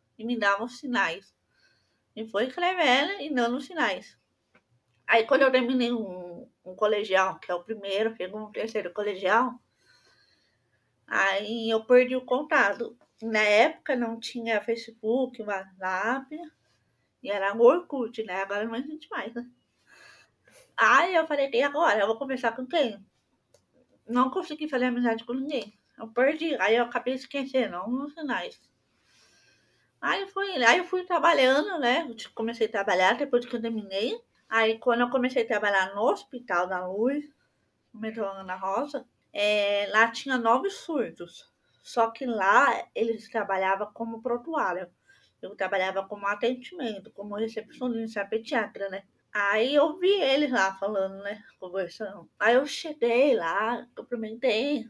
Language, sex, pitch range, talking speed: Portuguese, female, 210-270 Hz, 150 wpm